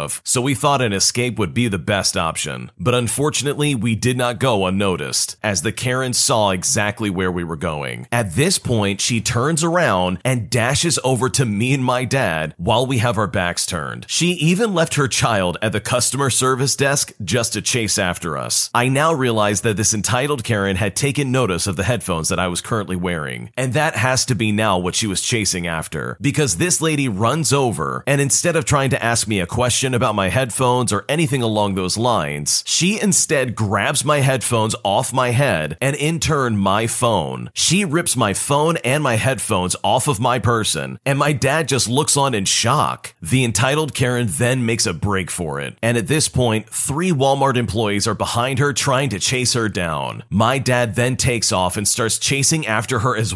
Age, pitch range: 40-59, 105-135 Hz